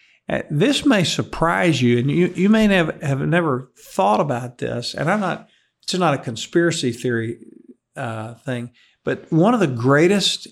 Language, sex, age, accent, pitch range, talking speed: English, male, 50-69, American, 130-175 Hz, 165 wpm